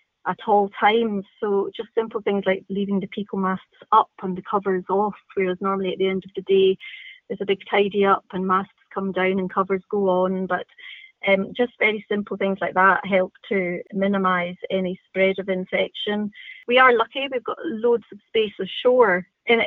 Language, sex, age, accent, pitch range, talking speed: English, female, 30-49, British, 190-225 Hz, 190 wpm